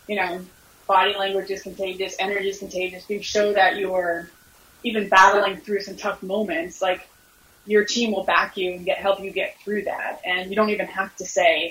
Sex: female